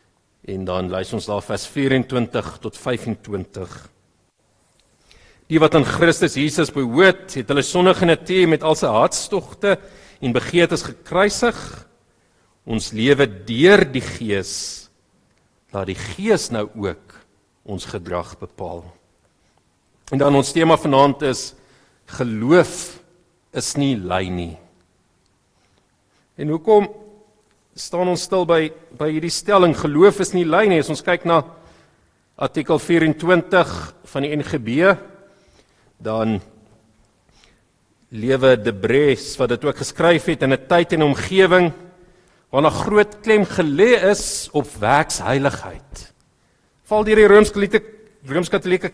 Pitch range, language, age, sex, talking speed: 115-185 Hz, English, 50-69, male, 125 wpm